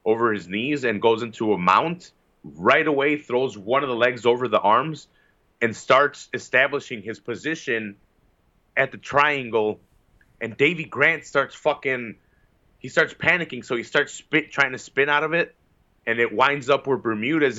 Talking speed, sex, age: 170 wpm, male, 30-49